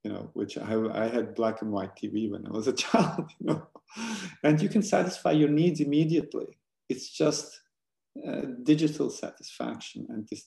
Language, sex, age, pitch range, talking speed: English, male, 50-69, 110-150 Hz, 180 wpm